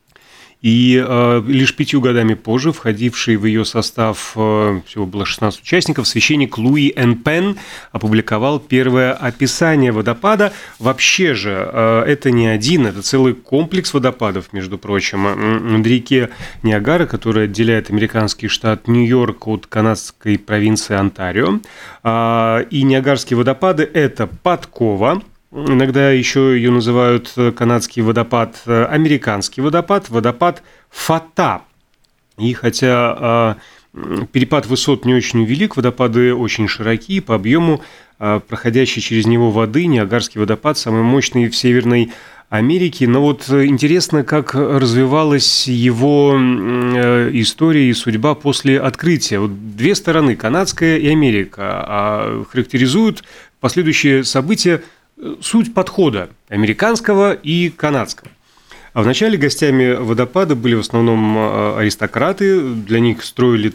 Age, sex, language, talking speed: 30-49, male, Russian, 110 wpm